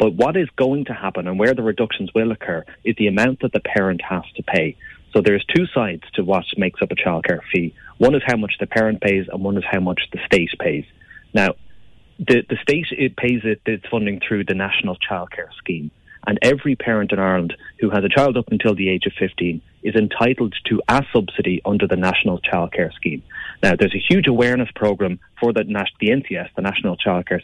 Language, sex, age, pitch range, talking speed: English, male, 30-49, 95-115 Hz, 220 wpm